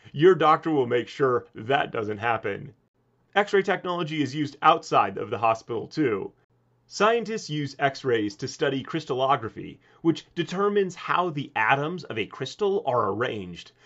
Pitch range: 130-180 Hz